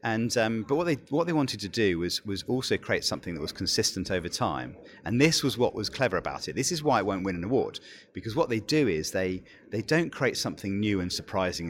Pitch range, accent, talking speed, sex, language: 95-120 Hz, British, 250 wpm, male, English